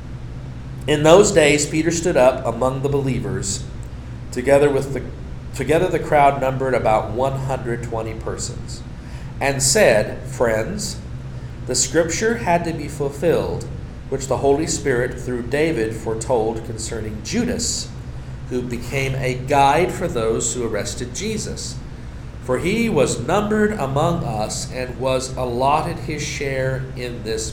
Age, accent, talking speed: 40-59, American, 130 wpm